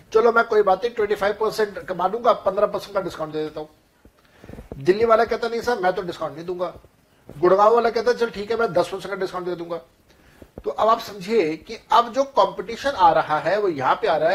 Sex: male